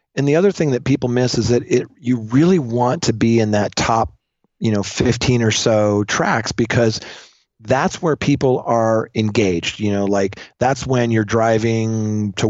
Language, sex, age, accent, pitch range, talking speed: English, male, 40-59, American, 105-130 Hz, 180 wpm